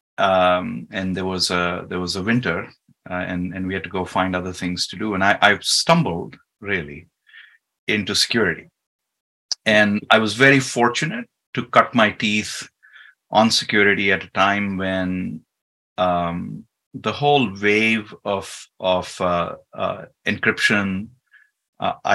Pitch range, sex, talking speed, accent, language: 90-100 Hz, male, 145 wpm, Indian, English